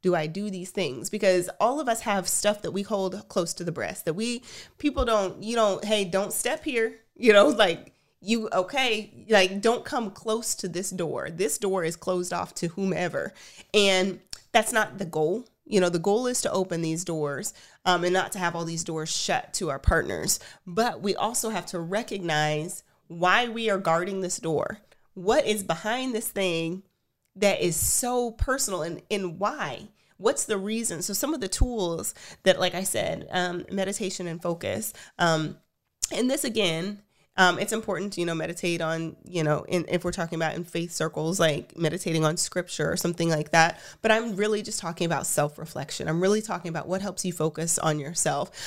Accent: American